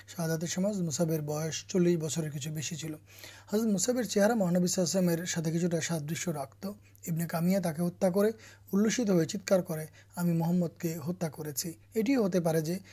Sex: male